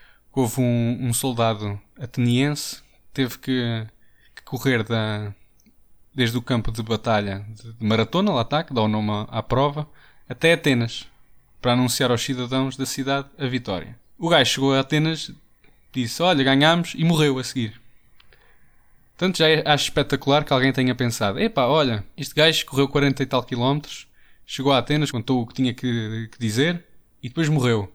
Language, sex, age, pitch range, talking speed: Portuguese, male, 20-39, 115-145 Hz, 165 wpm